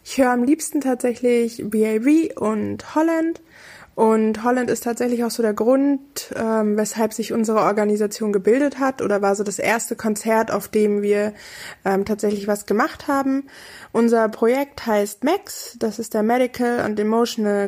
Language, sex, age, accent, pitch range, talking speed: German, female, 20-39, German, 215-245 Hz, 160 wpm